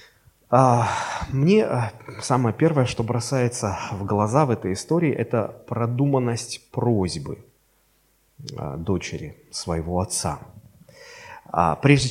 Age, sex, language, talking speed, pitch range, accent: 30-49, male, Russian, 85 wpm, 105-155 Hz, native